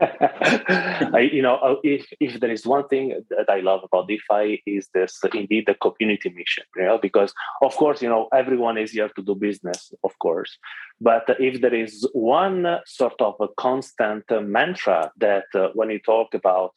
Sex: male